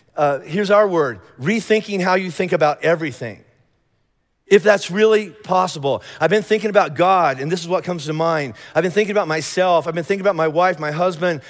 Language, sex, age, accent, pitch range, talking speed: English, male, 40-59, American, 155-195 Hz, 205 wpm